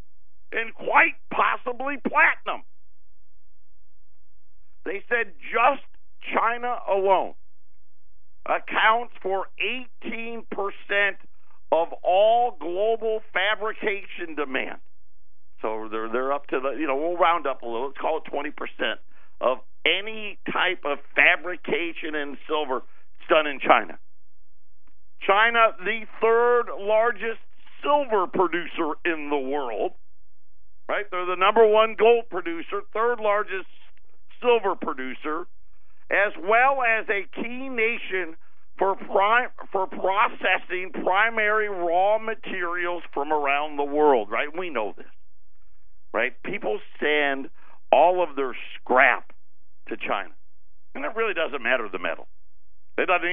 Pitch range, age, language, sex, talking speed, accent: 145-225 Hz, 50-69, English, male, 115 wpm, American